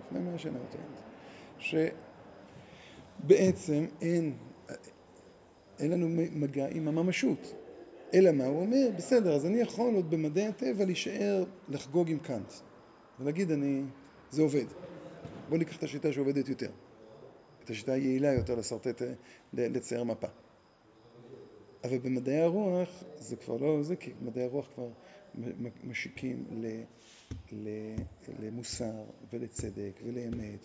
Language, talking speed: Hebrew, 100 wpm